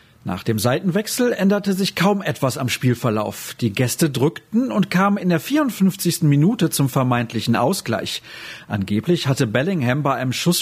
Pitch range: 120-175 Hz